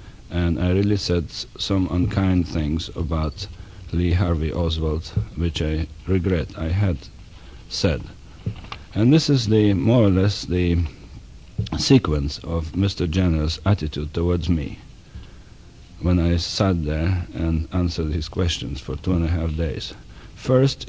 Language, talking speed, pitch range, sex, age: English, 130 wpm, 85-115 Hz, male, 50-69